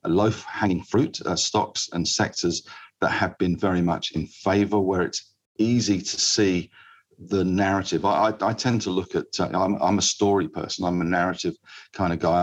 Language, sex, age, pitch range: English, male, 50-69, 85-100 Hz